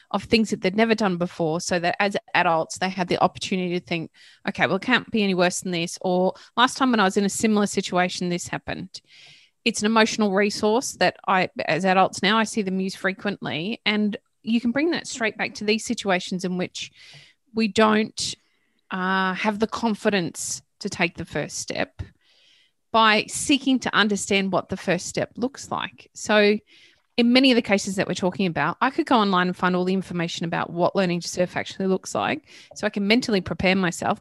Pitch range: 180-220 Hz